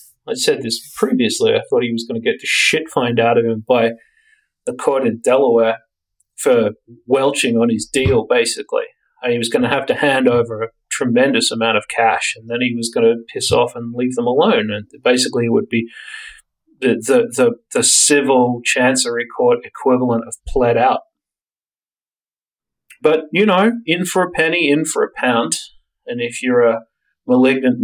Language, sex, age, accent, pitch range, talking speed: English, male, 30-49, Australian, 115-145 Hz, 180 wpm